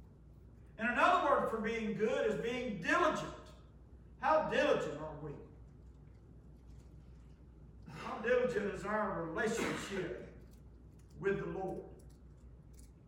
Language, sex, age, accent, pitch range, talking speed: English, male, 50-69, American, 170-245 Hz, 95 wpm